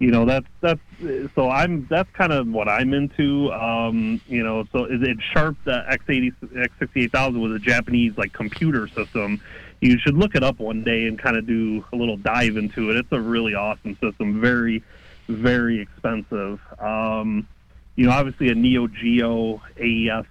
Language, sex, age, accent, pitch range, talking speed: English, male, 30-49, American, 110-125 Hz, 185 wpm